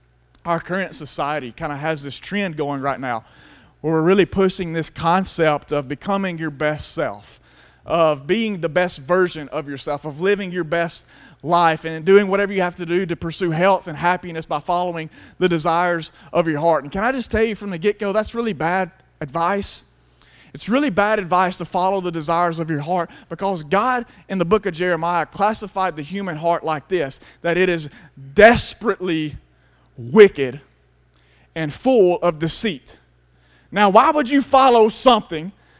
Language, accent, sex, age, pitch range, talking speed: English, American, male, 30-49, 160-215 Hz, 175 wpm